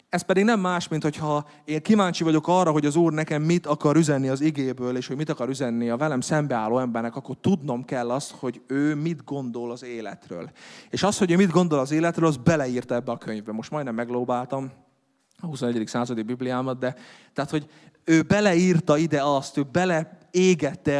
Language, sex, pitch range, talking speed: Hungarian, male, 125-155 Hz, 190 wpm